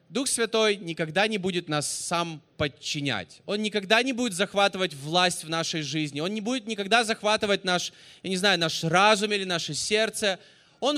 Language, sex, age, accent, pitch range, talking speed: Russian, male, 20-39, native, 175-245 Hz, 175 wpm